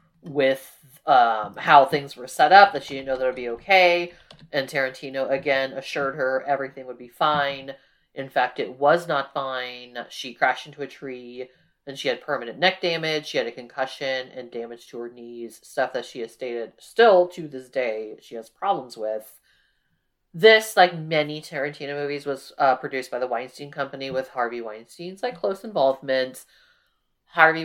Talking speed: 180 wpm